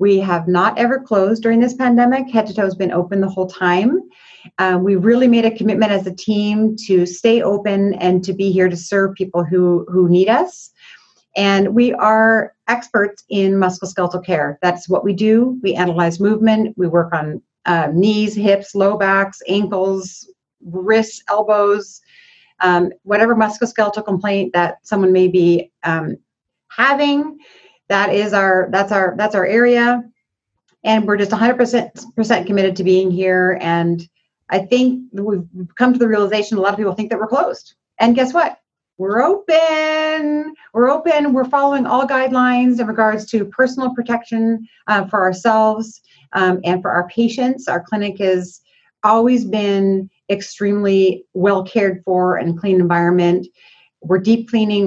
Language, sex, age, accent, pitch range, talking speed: English, female, 30-49, American, 185-235 Hz, 160 wpm